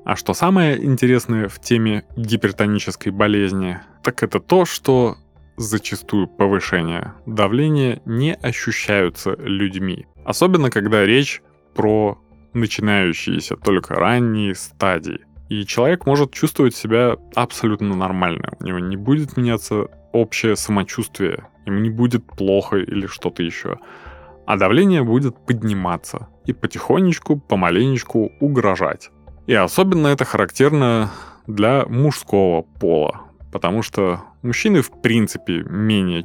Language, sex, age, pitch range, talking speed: Russian, male, 20-39, 95-120 Hz, 115 wpm